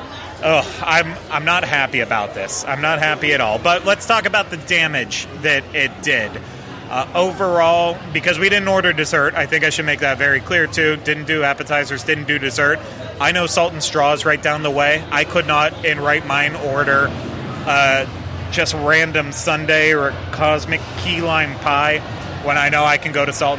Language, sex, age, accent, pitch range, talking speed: English, male, 30-49, American, 140-170 Hz, 195 wpm